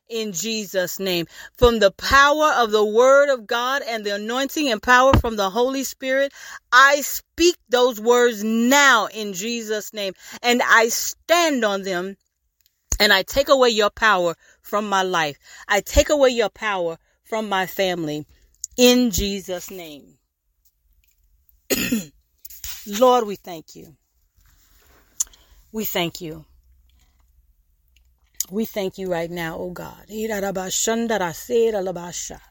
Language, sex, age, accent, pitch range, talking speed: English, female, 40-59, American, 130-220 Hz, 125 wpm